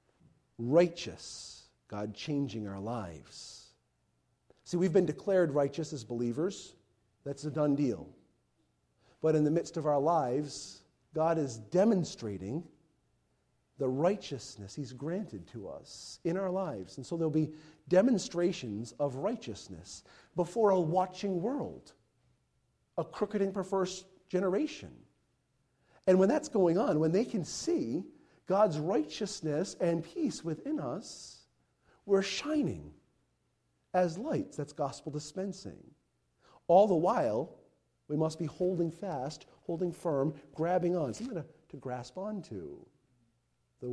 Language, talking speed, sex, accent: English, 125 wpm, male, American